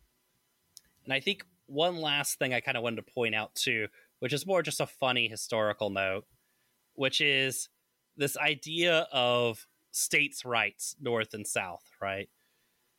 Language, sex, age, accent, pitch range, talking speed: English, male, 20-39, American, 115-145 Hz, 150 wpm